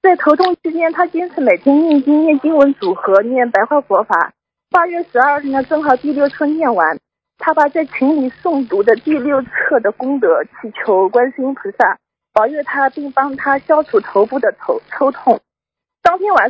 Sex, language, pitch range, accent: female, Chinese, 255-335 Hz, native